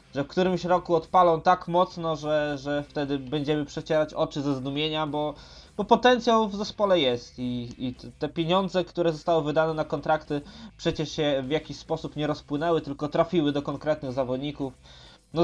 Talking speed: 165 wpm